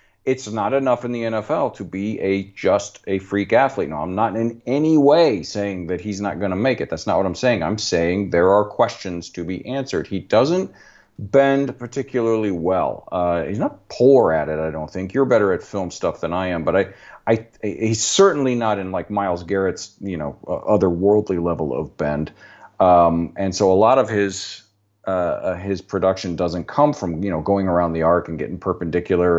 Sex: male